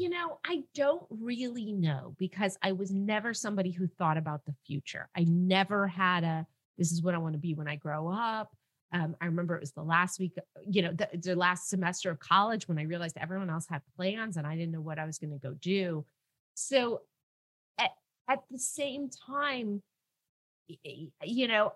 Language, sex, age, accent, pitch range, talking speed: English, female, 30-49, American, 165-210 Hz, 200 wpm